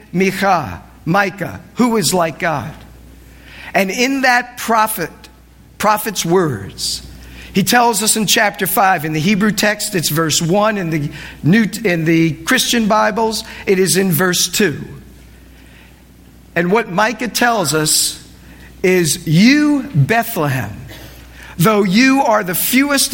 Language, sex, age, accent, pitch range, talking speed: English, male, 50-69, American, 160-225 Hz, 125 wpm